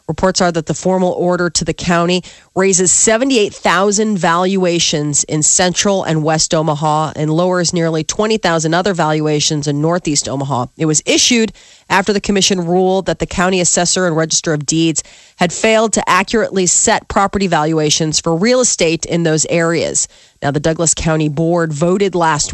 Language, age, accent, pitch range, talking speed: English, 30-49, American, 160-205 Hz, 160 wpm